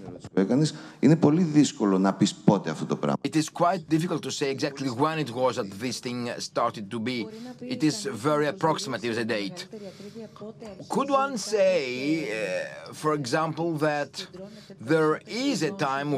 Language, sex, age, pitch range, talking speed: Greek, male, 50-69, 125-160 Hz, 45 wpm